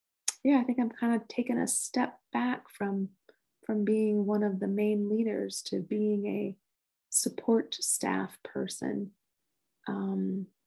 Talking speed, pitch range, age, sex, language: 145 wpm, 195-235 Hz, 30-49, female, English